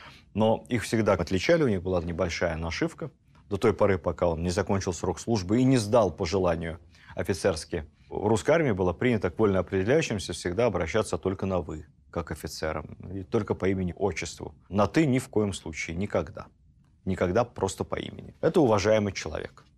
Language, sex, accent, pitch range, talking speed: Russian, male, native, 85-110 Hz, 170 wpm